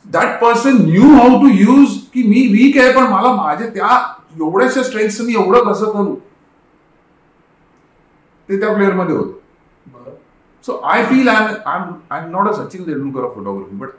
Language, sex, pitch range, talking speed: Marathi, male, 140-235 Hz, 145 wpm